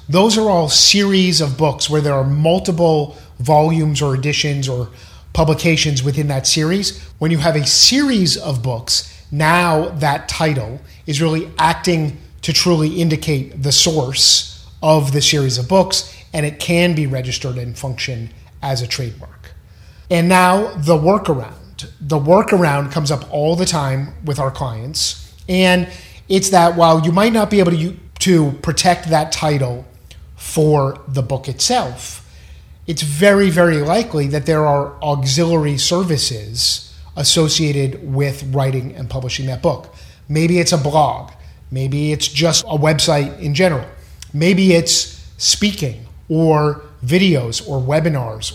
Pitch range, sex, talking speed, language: 130-170 Hz, male, 145 wpm, English